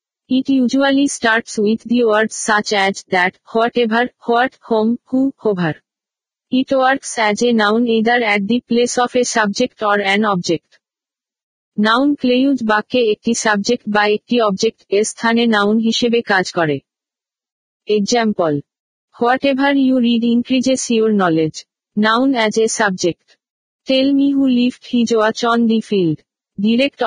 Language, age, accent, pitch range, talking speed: Bengali, 50-69, native, 210-245 Hz, 145 wpm